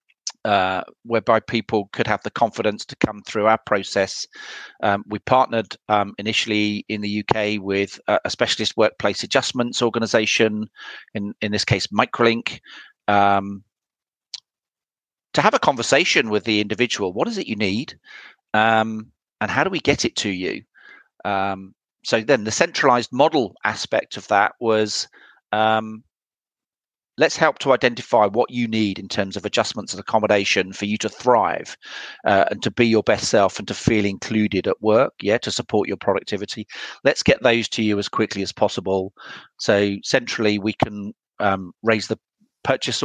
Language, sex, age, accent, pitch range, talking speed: English, male, 40-59, British, 100-115 Hz, 165 wpm